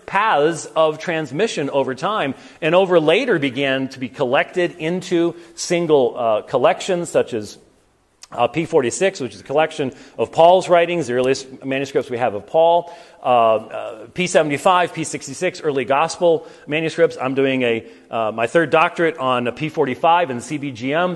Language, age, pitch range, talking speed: English, 40-59, 135-170 Hz, 150 wpm